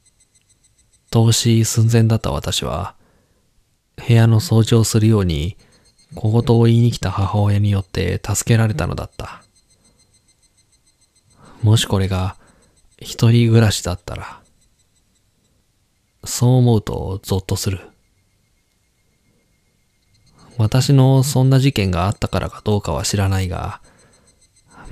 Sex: male